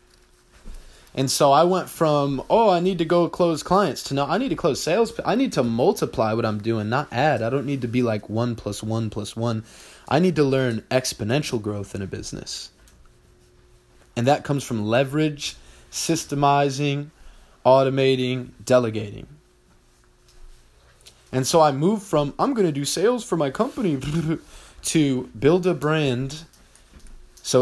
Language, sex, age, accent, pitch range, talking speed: English, male, 20-39, American, 110-155 Hz, 160 wpm